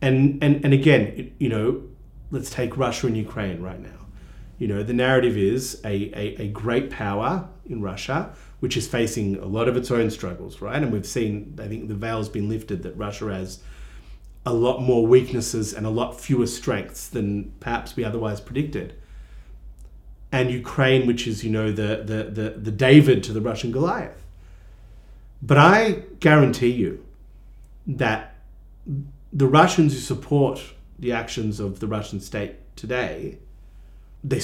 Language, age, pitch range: English, 30-49, 105-130 Hz